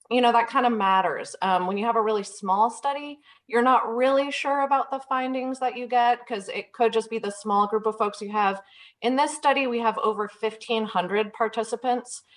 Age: 30-49